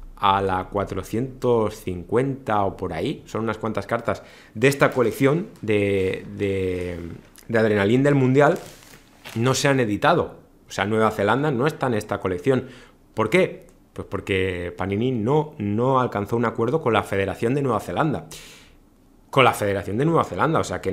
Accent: Spanish